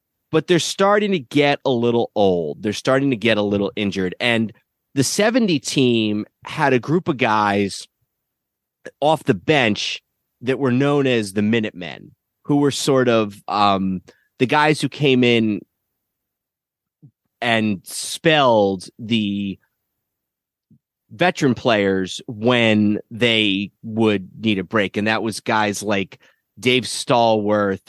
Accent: American